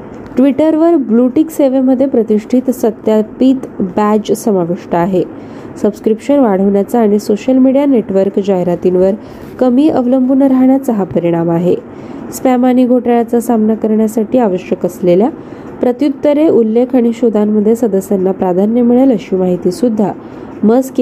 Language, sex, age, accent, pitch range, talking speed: Marathi, female, 20-39, native, 205-260 Hz, 65 wpm